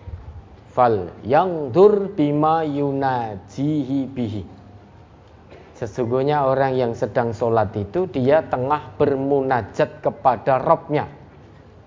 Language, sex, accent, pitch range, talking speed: Indonesian, male, native, 105-150 Hz, 80 wpm